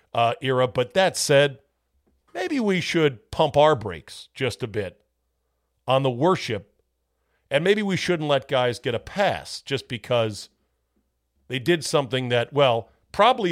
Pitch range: 100-150 Hz